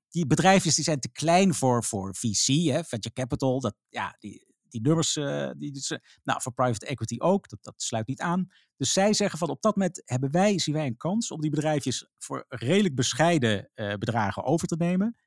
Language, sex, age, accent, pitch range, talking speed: Dutch, male, 50-69, Dutch, 120-170 Hz, 210 wpm